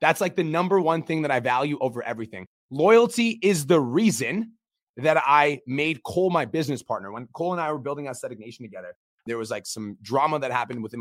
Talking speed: 215 wpm